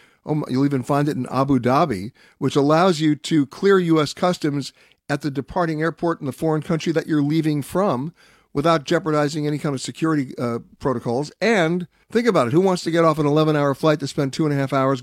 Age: 60-79